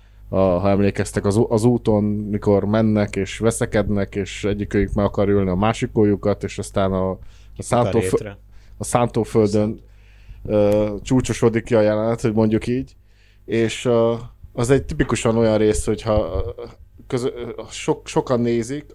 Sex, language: male, Hungarian